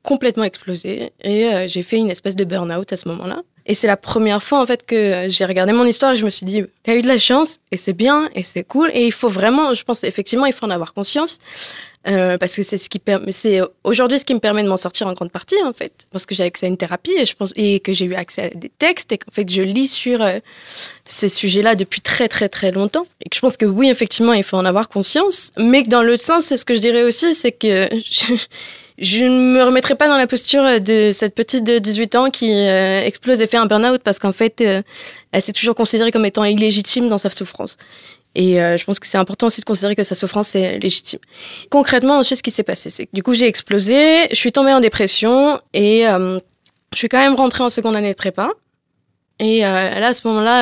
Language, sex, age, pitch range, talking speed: French, female, 20-39, 195-245 Hz, 260 wpm